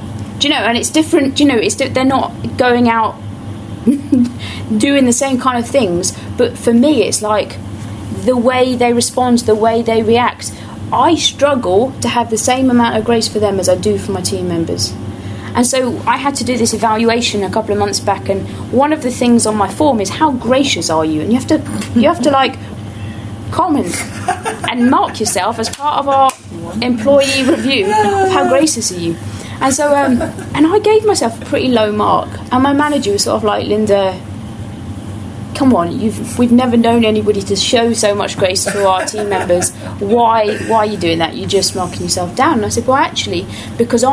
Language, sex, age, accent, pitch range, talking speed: English, female, 30-49, British, 180-260 Hz, 205 wpm